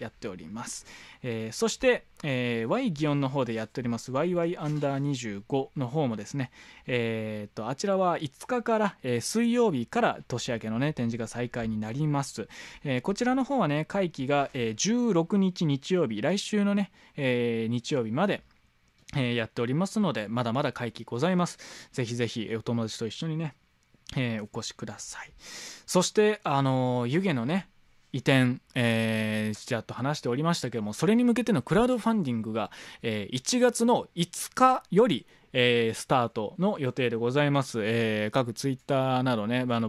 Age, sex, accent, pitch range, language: 20-39, male, native, 115-170 Hz, Japanese